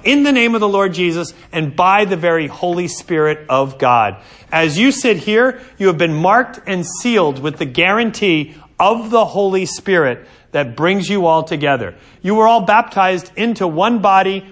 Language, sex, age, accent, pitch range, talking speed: English, male, 40-59, American, 155-210 Hz, 180 wpm